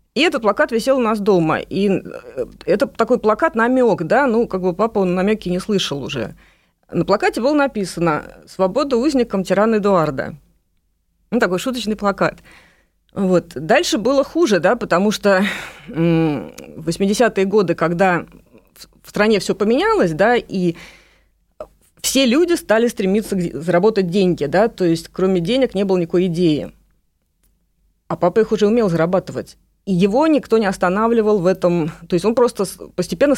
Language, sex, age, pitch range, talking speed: Russian, female, 30-49, 180-230 Hz, 145 wpm